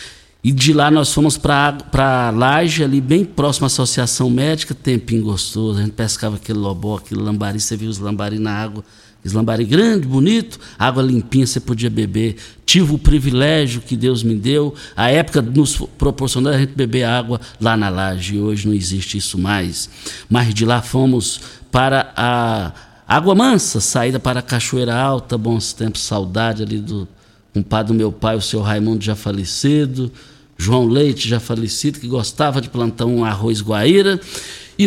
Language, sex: Portuguese, male